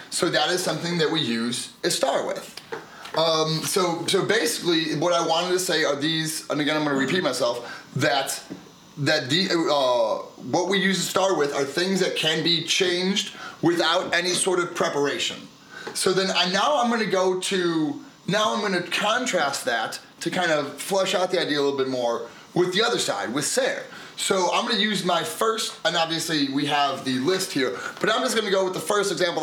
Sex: male